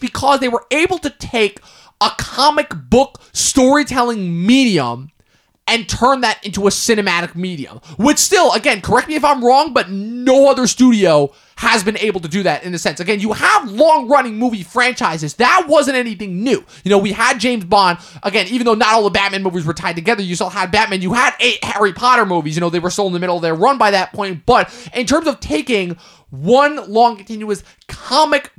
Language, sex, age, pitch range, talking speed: English, male, 20-39, 190-250 Hz, 210 wpm